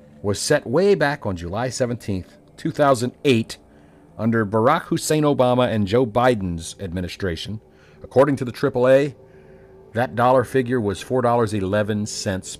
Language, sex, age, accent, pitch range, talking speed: English, male, 50-69, American, 95-145 Hz, 120 wpm